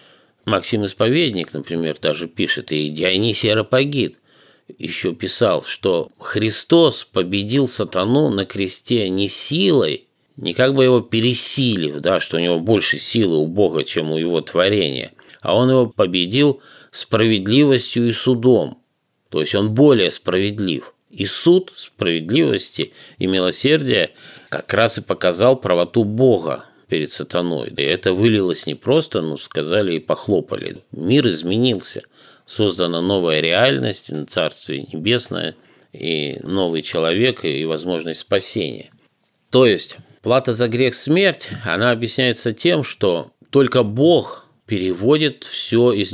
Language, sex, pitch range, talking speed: Russian, male, 95-125 Hz, 125 wpm